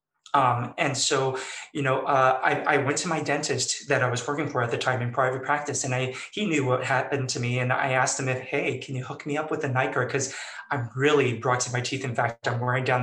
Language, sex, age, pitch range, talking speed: English, male, 20-39, 130-150 Hz, 265 wpm